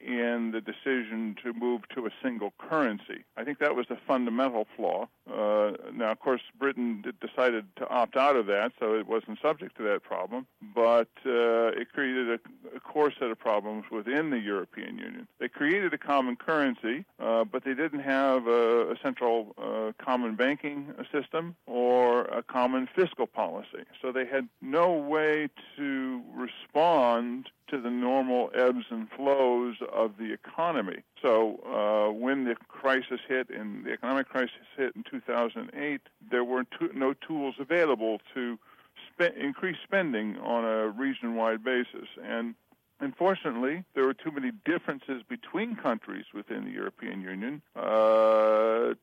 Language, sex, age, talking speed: English, female, 50-69, 155 wpm